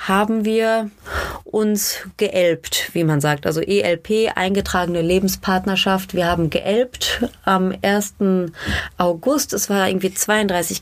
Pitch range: 175-215 Hz